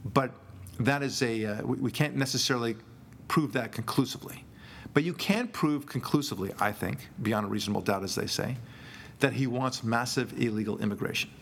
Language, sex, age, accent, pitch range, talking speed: English, male, 50-69, American, 110-135 Hz, 165 wpm